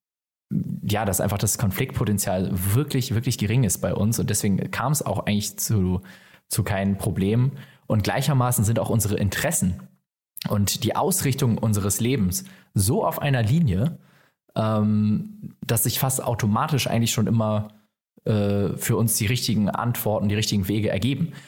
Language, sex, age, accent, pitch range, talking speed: German, male, 20-39, German, 100-125 Hz, 150 wpm